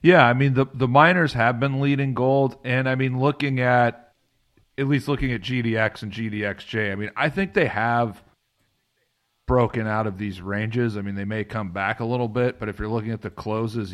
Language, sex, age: English, male, 40-59